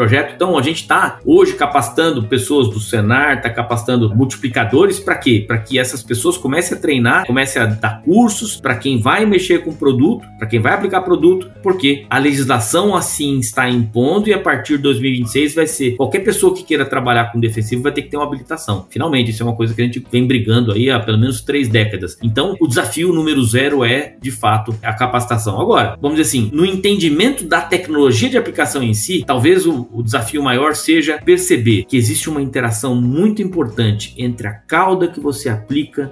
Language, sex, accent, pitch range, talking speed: Portuguese, male, Brazilian, 115-150 Hz, 200 wpm